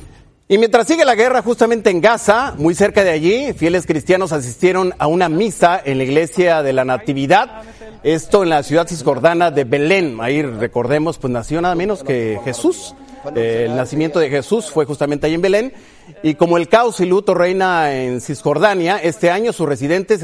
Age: 40-59